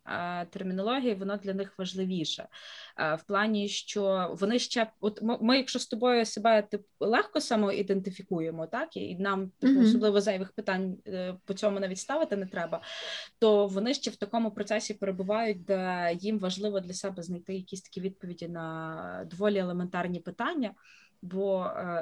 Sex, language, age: female, Ukrainian, 20-39